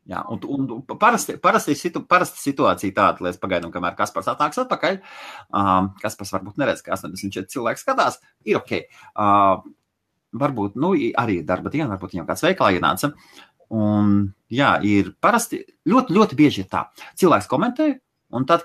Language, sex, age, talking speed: English, male, 30-49, 165 wpm